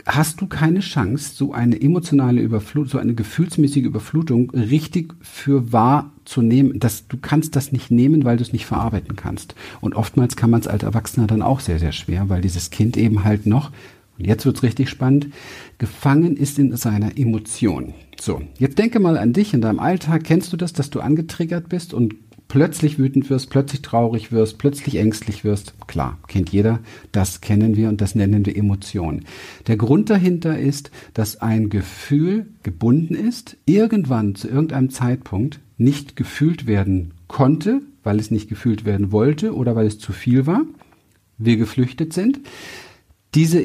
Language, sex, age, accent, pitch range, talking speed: German, male, 50-69, German, 110-150 Hz, 175 wpm